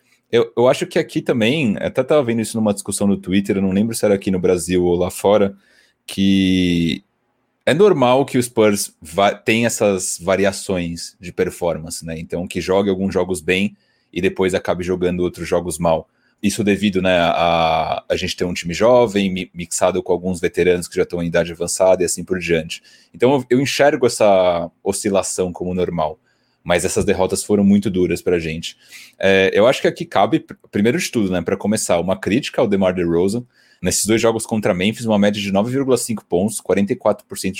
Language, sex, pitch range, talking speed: Portuguese, male, 90-110 Hz, 195 wpm